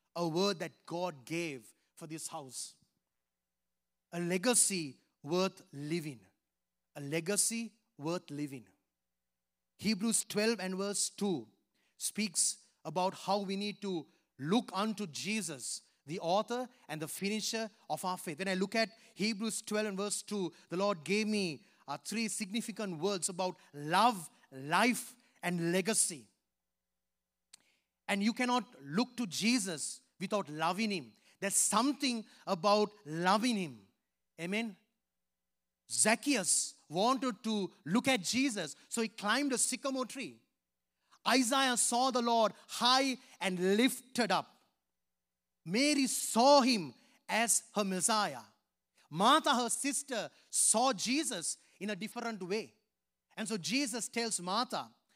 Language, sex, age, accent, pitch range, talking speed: English, male, 30-49, Indian, 165-230 Hz, 125 wpm